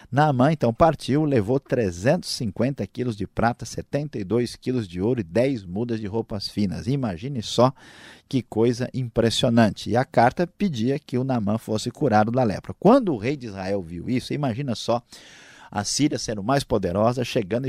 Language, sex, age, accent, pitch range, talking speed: Portuguese, male, 50-69, Brazilian, 105-135 Hz, 165 wpm